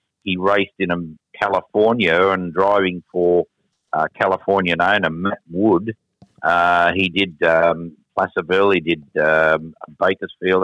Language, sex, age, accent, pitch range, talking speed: English, male, 50-69, Australian, 85-95 Hz, 125 wpm